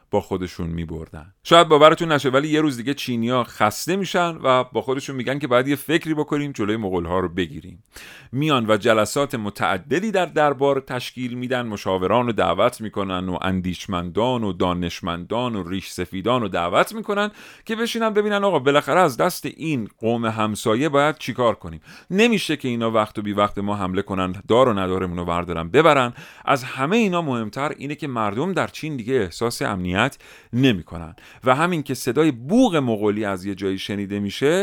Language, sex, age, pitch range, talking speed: Persian, male, 40-59, 95-150 Hz, 175 wpm